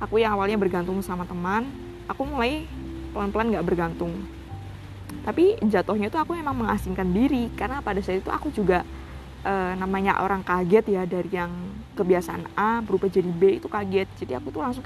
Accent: native